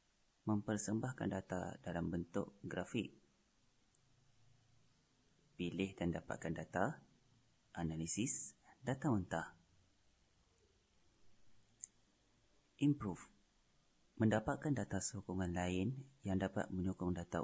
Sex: male